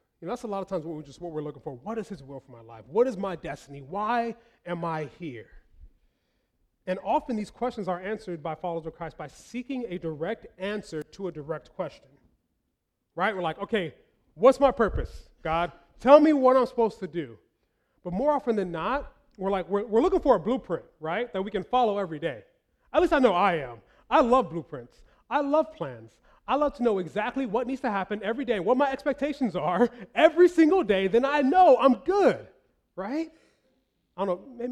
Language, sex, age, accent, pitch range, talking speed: English, male, 30-49, American, 175-265 Hz, 210 wpm